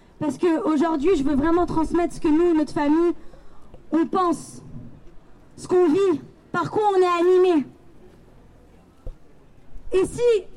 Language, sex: French, female